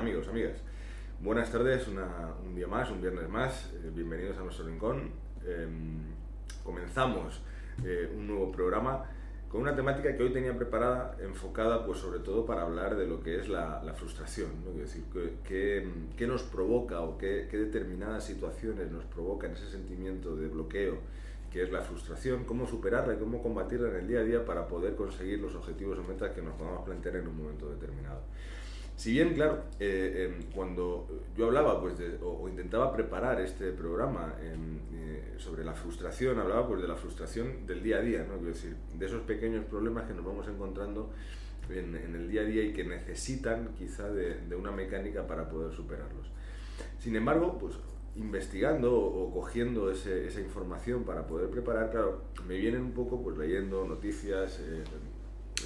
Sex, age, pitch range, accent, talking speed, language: male, 30-49, 85-115 Hz, Spanish, 180 wpm, Spanish